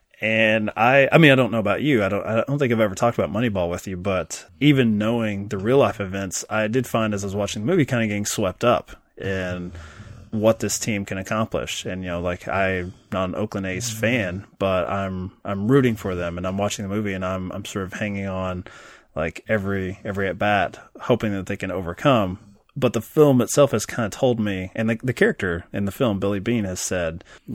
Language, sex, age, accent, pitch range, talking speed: English, male, 20-39, American, 95-110 Hz, 235 wpm